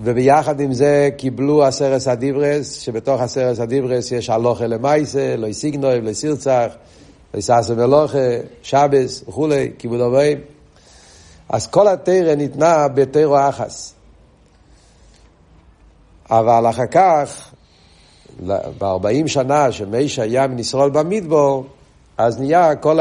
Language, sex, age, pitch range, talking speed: Hebrew, male, 60-79, 120-145 Hz, 100 wpm